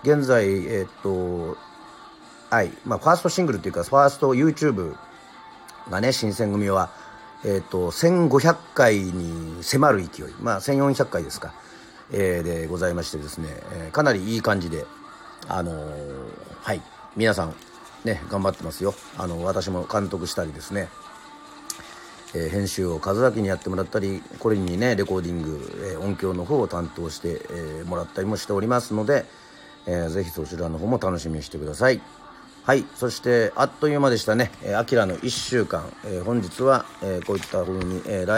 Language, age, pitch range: Japanese, 40-59, 85-115 Hz